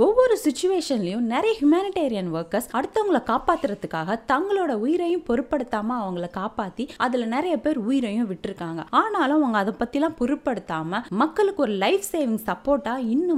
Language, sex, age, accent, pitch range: Tamil, female, 20-39, native, 200-295 Hz